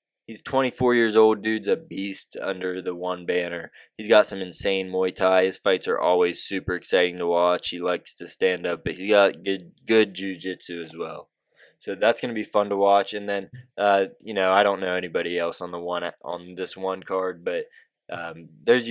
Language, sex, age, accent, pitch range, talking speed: English, male, 20-39, American, 90-105 Hz, 210 wpm